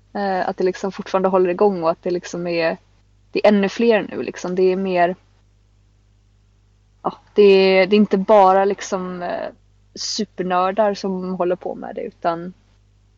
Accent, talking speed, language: native, 165 wpm, Swedish